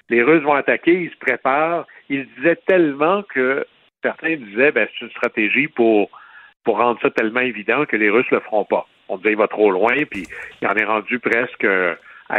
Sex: male